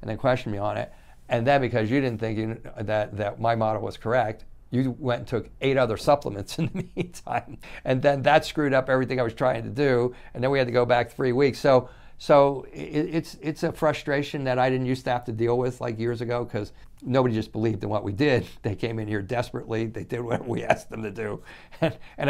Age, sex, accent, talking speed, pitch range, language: 60-79, male, American, 240 wpm, 105-125 Hz, English